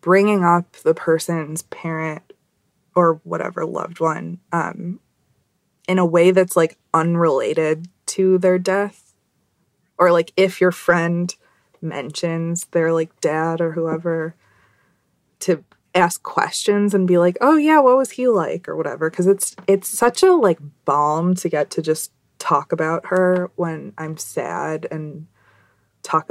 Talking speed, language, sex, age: 145 wpm, English, female, 20-39